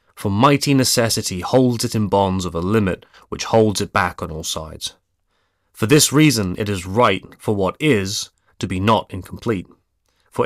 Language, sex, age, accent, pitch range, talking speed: English, male, 30-49, British, 95-120 Hz, 180 wpm